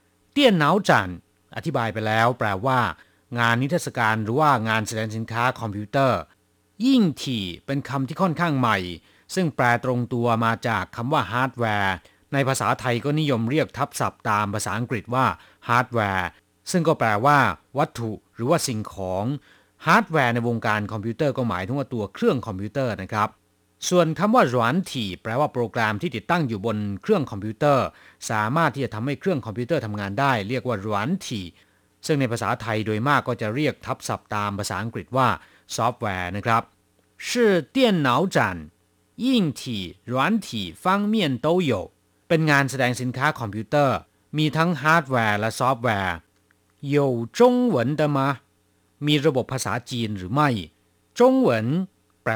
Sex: male